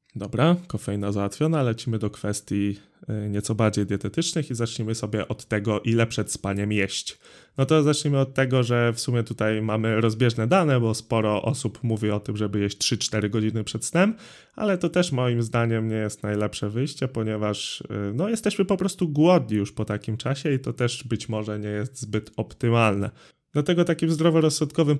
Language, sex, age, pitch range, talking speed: Polish, male, 20-39, 105-140 Hz, 175 wpm